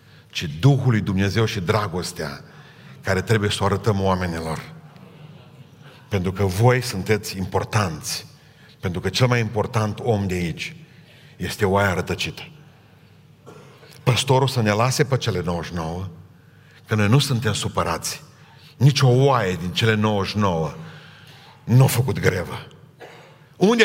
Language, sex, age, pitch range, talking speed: Romanian, male, 50-69, 100-150 Hz, 130 wpm